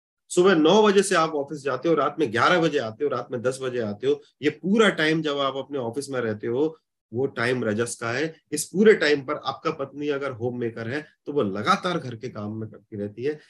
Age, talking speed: 30-49, 240 wpm